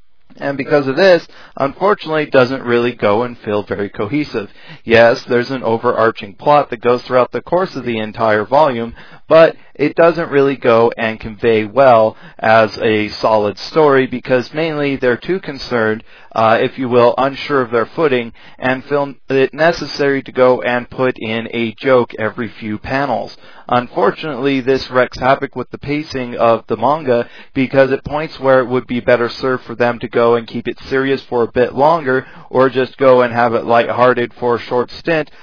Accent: American